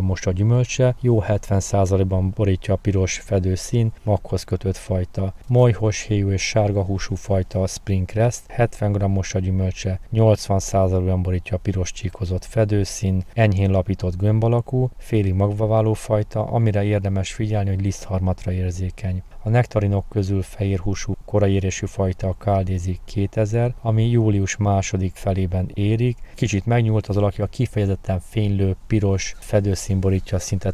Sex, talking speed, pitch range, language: male, 125 wpm, 95-110 Hz, Hungarian